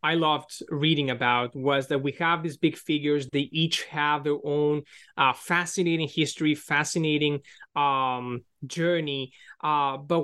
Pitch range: 145-175 Hz